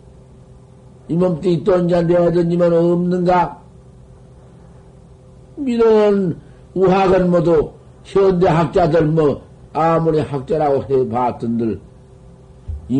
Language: Korean